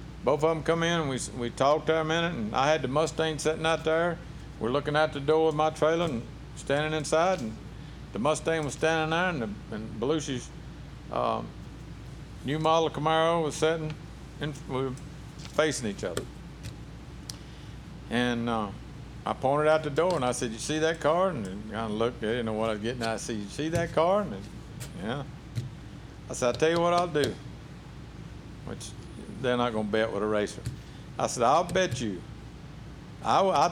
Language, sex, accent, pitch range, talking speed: English, male, American, 120-160 Hz, 195 wpm